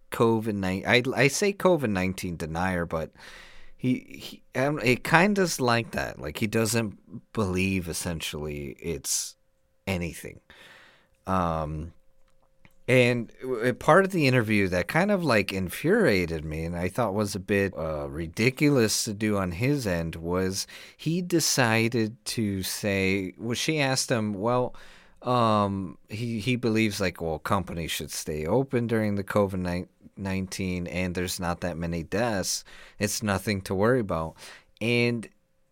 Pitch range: 90-120 Hz